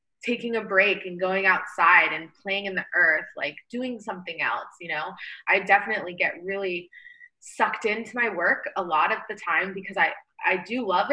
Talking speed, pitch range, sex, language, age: 190 wpm, 175-220 Hz, female, English, 20-39